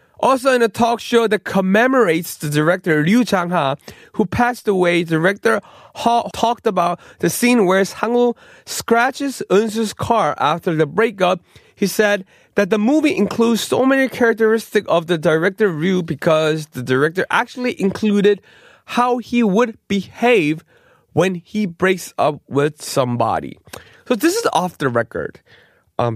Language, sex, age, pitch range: Korean, male, 20-39, 130-220 Hz